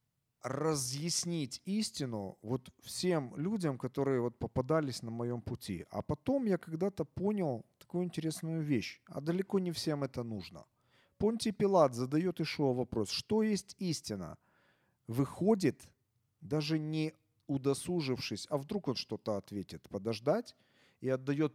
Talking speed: 120 wpm